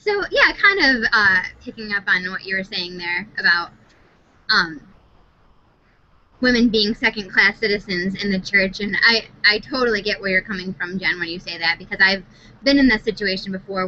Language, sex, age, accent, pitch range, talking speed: English, female, 10-29, American, 190-240 Hz, 185 wpm